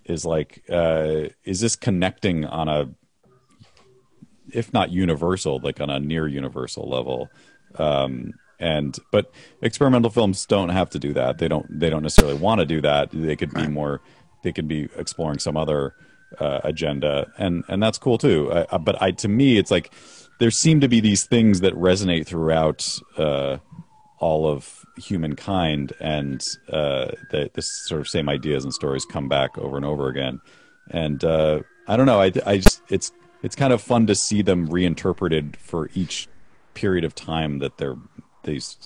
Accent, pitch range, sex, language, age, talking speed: American, 75-95 Hz, male, English, 40-59, 175 wpm